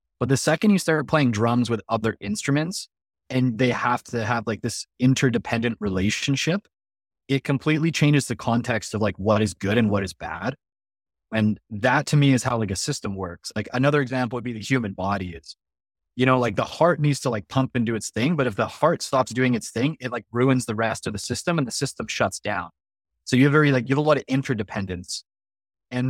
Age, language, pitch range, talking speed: 20-39, English, 105-135 Hz, 225 wpm